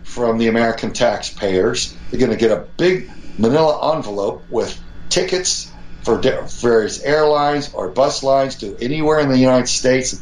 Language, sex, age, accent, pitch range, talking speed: English, male, 60-79, American, 100-130 Hz, 160 wpm